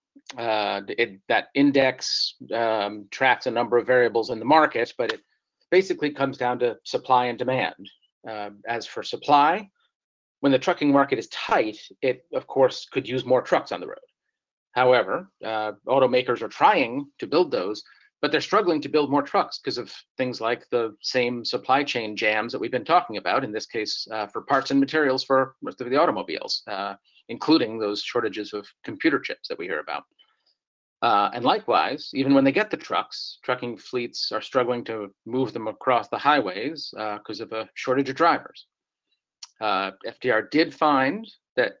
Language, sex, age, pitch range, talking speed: English, male, 40-59, 120-150 Hz, 180 wpm